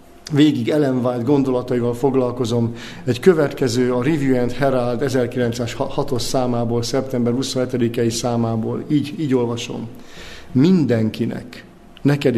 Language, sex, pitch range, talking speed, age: Hungarian, male, 115-140 Hz, 100 wpm, 50-69